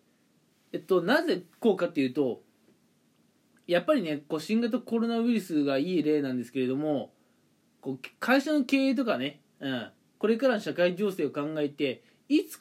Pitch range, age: 150-230 Hz, 20-39